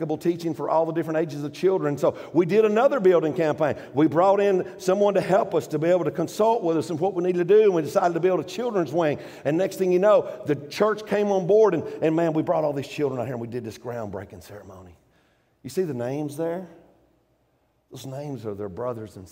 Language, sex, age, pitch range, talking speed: English, male, 50-69, 115-160 Hz, 240 wpm